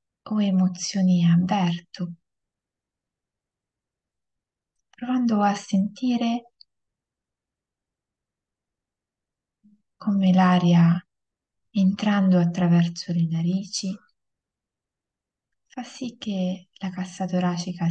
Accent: native